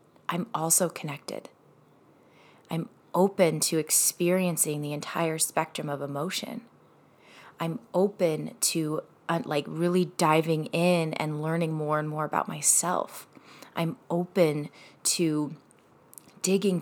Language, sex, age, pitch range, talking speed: English, female, 20-39, 155-175 Hz, 110 wpm